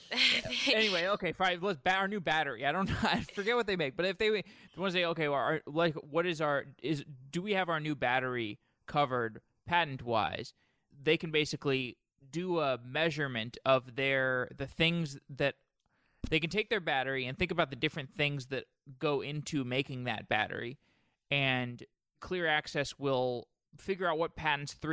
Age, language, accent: 20-39, English, American